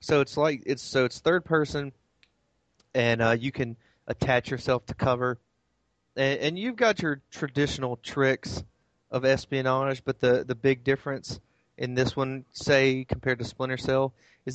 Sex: male